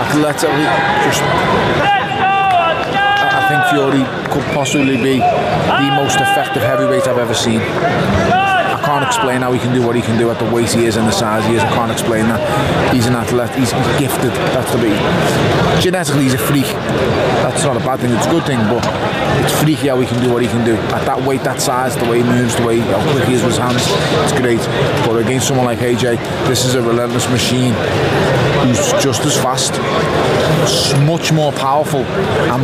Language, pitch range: English, 125-150 Hz